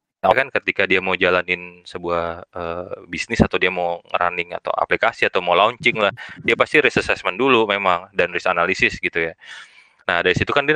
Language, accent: Indonesian, native